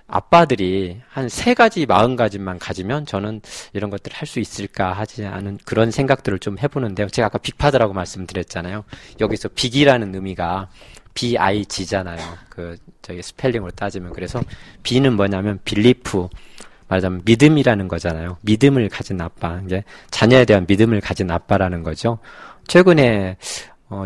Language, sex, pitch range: Korean, male, 95-125 Hz